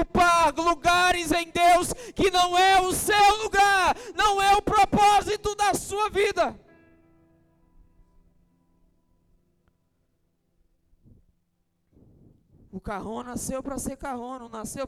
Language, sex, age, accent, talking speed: Portuguese, male, 20-39, Brazilian, 95 wpm